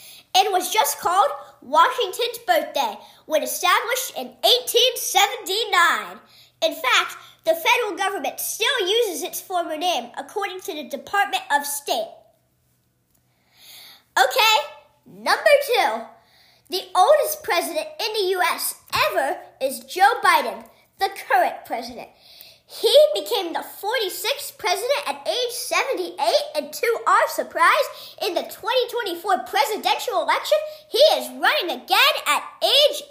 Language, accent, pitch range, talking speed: English, American, 290-420 Hz, 120 wpm